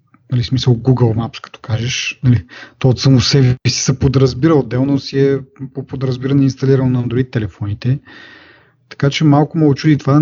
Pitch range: 120-135 Hz